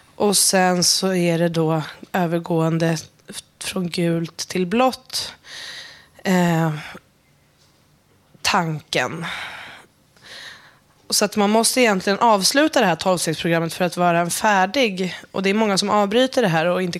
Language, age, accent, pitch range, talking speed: Swedish, 20-39, native, 170-205 Hz, 125 wpm